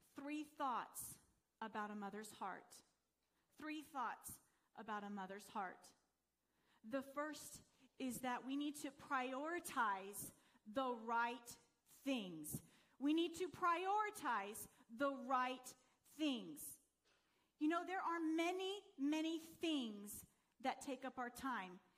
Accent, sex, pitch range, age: American, female, 250-325 Hz, 40-59